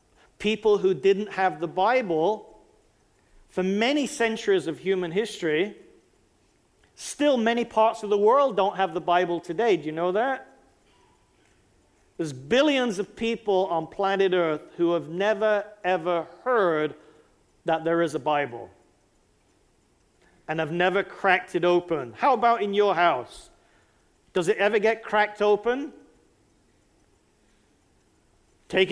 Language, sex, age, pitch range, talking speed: English, male, 50-69, 175-220 Hz, 130 wpm